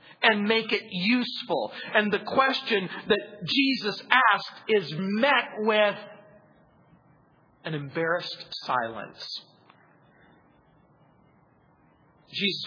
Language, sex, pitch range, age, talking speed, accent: English, male, 180-250 Hz, 40-59, 80 wpm, American